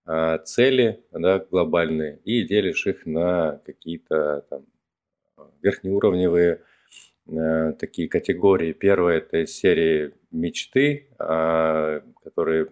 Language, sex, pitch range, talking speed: Russian, male, 80-100 Hz, 100 wpm